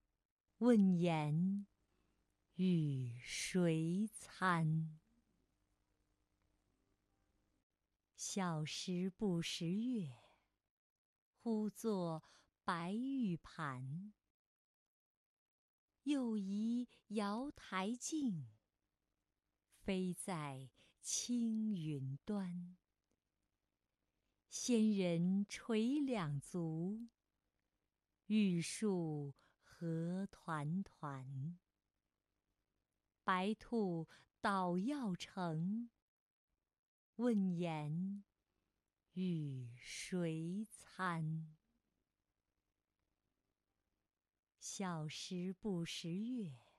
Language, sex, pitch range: Chinese, female, 155-215 Hz